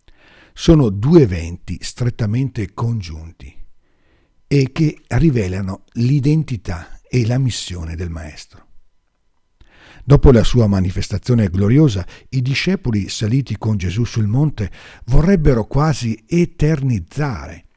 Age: 50-69